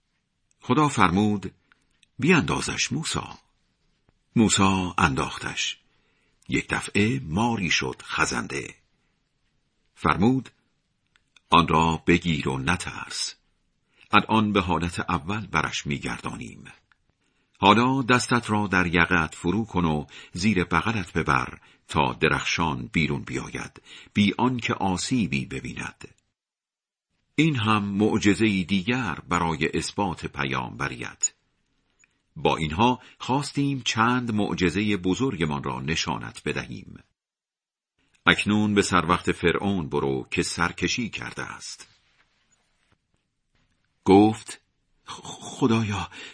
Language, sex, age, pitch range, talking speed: Persian, male, 50-69, 85-125 Hz, 90 wpm